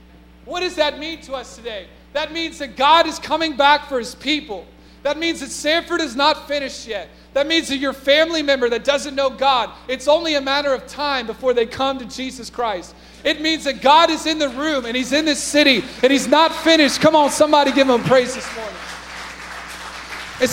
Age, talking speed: 30-49, 215 wpm